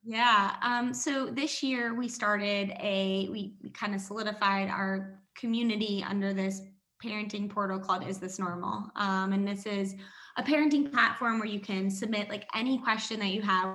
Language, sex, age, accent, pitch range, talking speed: English, female, 20-39, American, 190-215 Hz, 170 wpm